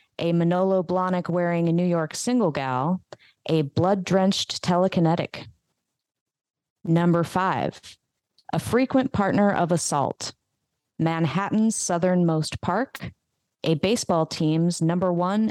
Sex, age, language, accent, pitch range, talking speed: female, 30-49, English, American, 160-190 Hz, 100 wpm